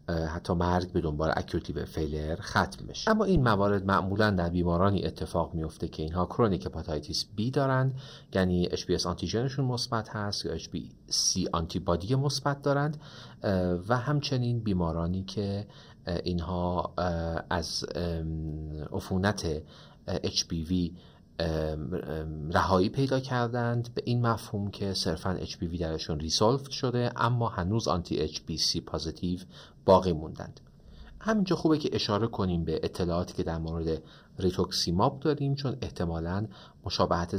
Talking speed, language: 120 wpm, Persian